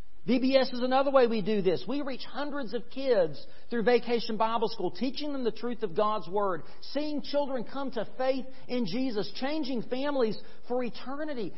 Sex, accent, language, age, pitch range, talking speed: male, American, English, 40-59, 205-265 Hz, 175 wpm